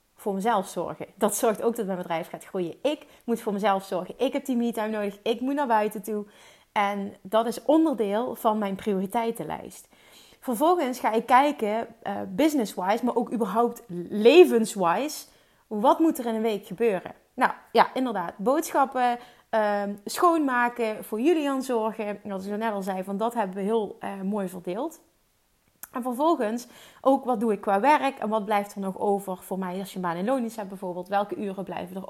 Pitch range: 200-255 Hz